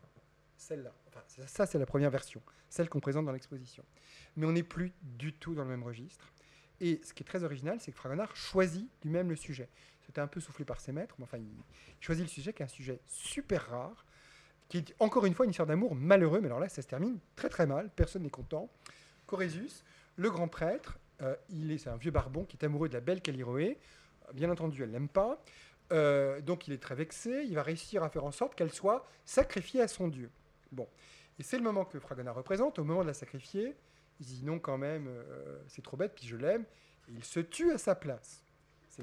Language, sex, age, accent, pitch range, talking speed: French, male, 30-49, French, 135-185 Hz, 235 wpm